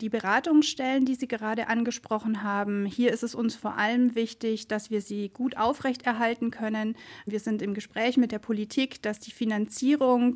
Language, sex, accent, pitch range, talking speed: German, female, German, 210-245 Hz, 175 wpm